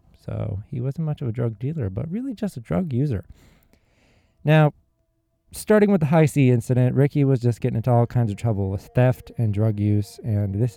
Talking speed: 205 wpm